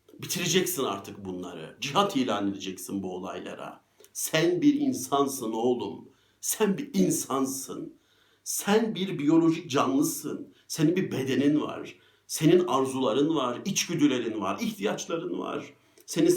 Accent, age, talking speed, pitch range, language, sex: native, 60-79, 115 wpm, 130-200 Hz, Turkish, male